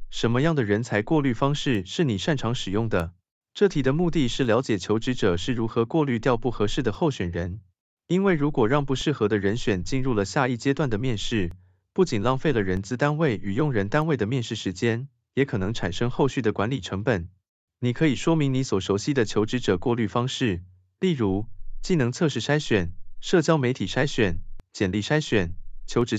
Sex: male